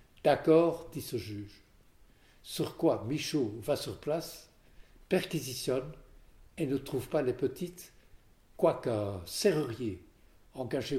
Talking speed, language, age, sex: 110 wpm, French, 60-79, male